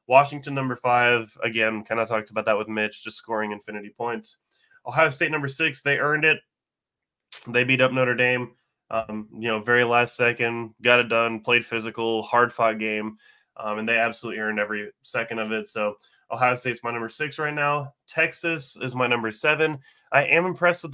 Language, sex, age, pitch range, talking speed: English, male, 20-39, 110-130 Hz, 190 wpm